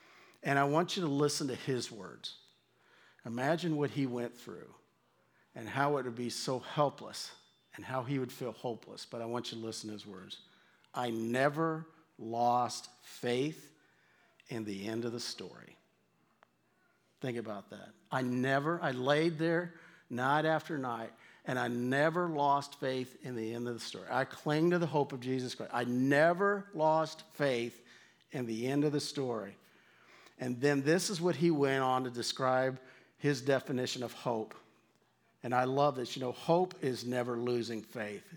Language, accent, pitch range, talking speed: English, American, 120-155 Hz, 175 wpm